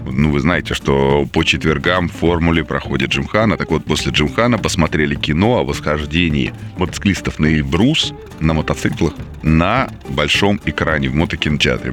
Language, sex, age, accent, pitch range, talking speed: Russian, male, 20-39, native, 80-100 Hz, 145 wpm